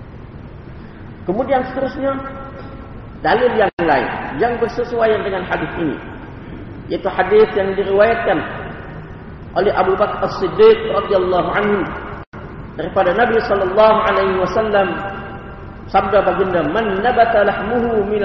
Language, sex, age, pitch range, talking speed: Malay, male, 40-59, 180-250 Hz, 100 wpm